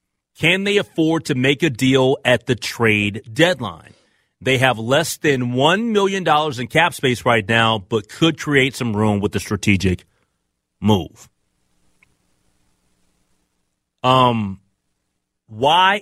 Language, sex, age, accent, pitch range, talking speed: English, male, 30-49, American, 105-170 Hz, 125 wpm